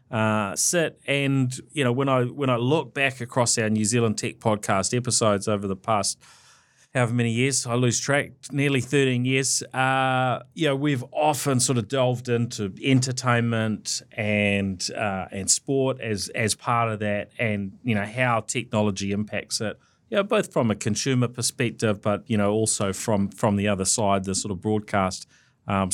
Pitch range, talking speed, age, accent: 105-130 Hz, 180 wpm, 30-49, Australian